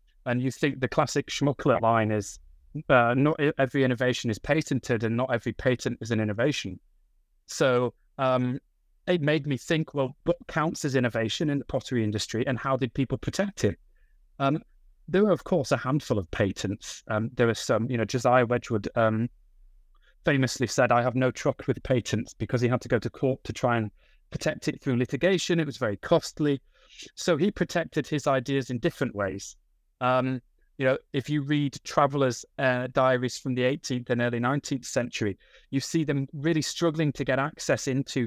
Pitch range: 120-145 Hz